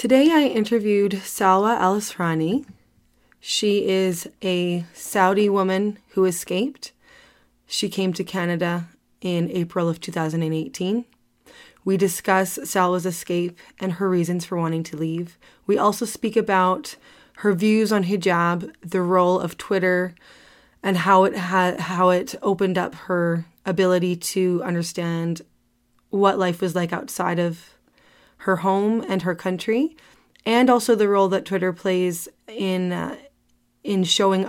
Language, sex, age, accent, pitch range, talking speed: English, female, 20-39, American, 175-195 Hz, 135 wpm